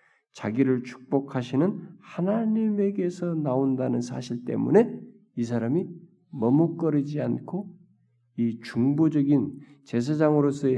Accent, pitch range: native, 120-165 Hz